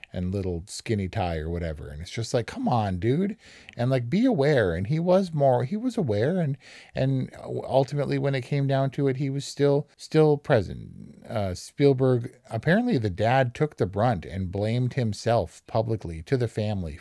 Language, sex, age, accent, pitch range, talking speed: English, male, 50-69, American, 95-125 Hz, 185 wpm